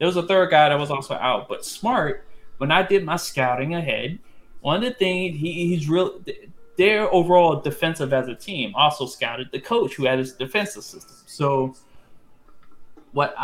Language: English